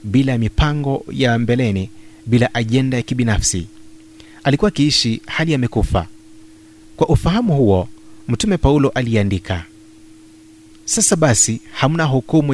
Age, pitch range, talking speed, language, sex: 30-49, 105-140 Hz, 105 wpm, Swahili, male